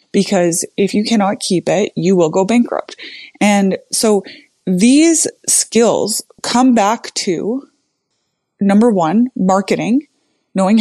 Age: 20-39